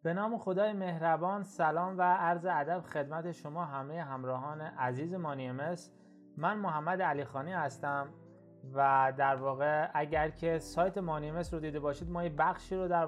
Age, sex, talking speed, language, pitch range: 30-49, male, 155 wpm, Persian, 140-170 Hz